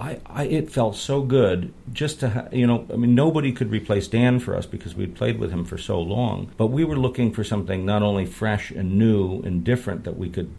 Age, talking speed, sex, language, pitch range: 50-69, 245 wpm, male, English, 90-115 Hz